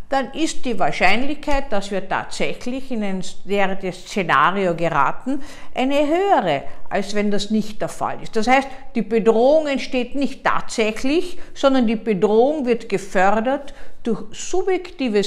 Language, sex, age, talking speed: German, female, 50-69, 135 wpm